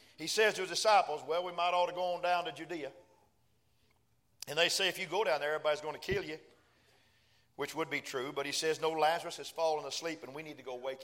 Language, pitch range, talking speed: English, 150-190 Hz, 250 wpm